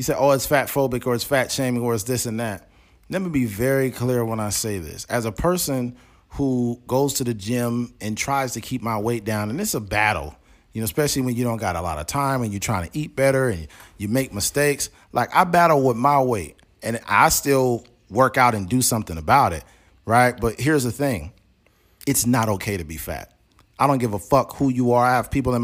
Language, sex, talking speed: English, male, 240 wpm